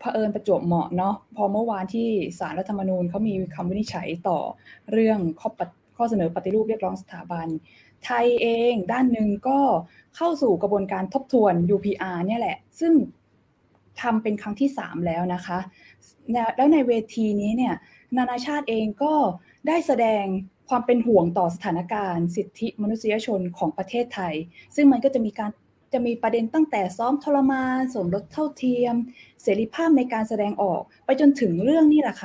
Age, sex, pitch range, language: 20-39, female, 190-255 Hz, Thai